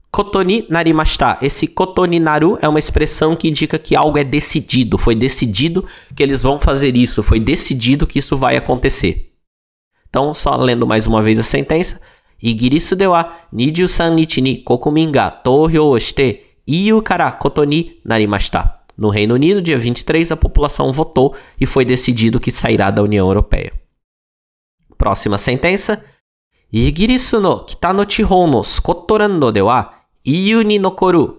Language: Portuguese